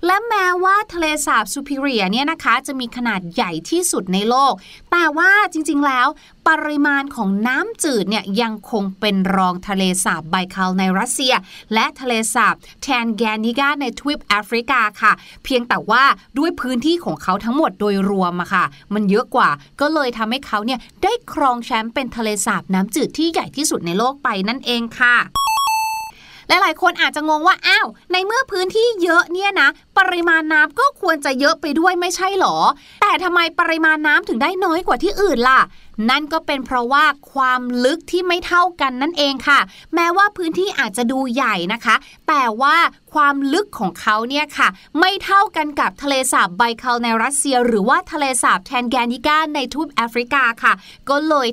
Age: 30-49